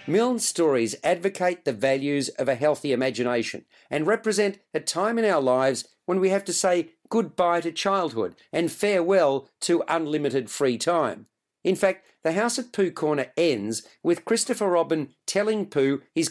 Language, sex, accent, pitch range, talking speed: English, male, Australian, 150-195 Hz, 160 wpm